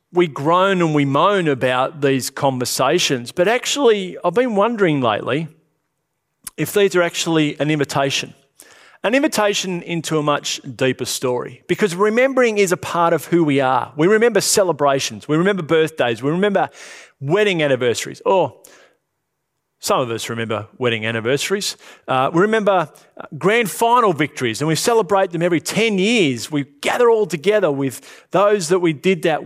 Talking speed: 155 wpm